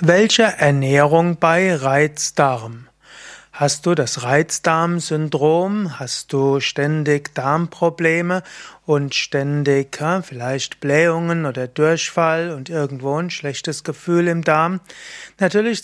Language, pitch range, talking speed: German, 145-175 Hz, 100 wpm